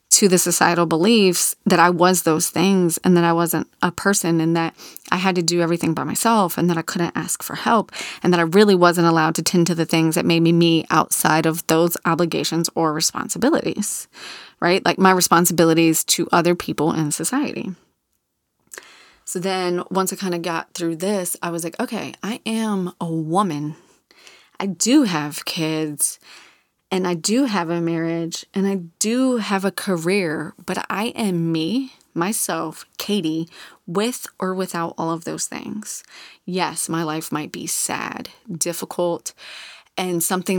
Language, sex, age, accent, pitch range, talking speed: English, female, 30-49, American, 165-195 Hz, 170 wpm